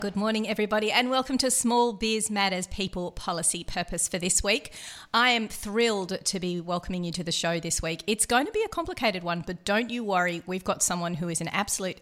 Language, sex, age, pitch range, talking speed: English, female, 40-59, 175-235 Hz, 225 wpm